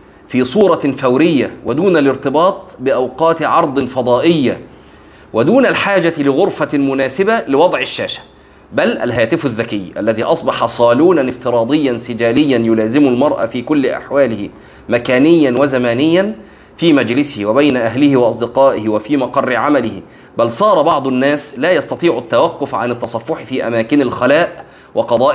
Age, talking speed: 30-49, 120 wpm